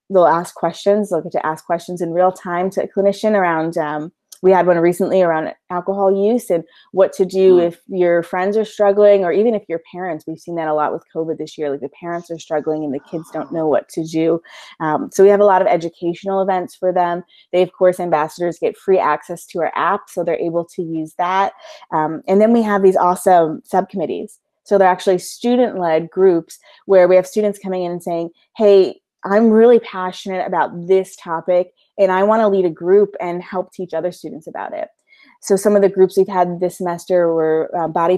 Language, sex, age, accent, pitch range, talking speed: English, female, 20-39, American, 170-195 Hz, 220 wpm